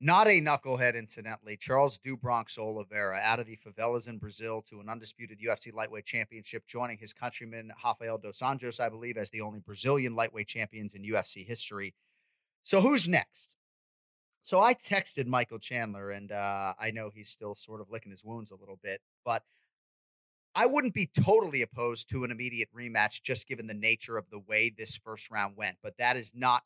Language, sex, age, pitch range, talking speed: English, male, 30-49, 105-130 Hz, 185 wpm